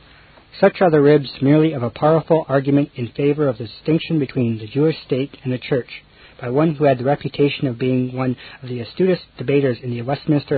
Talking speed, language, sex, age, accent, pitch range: 210 wpm, English, male, 50-69, American, 125-150 Hz